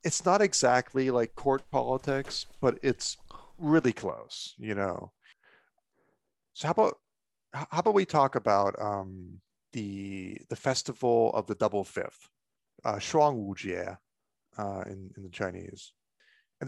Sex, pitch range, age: male, 100-135 Hz, 30-49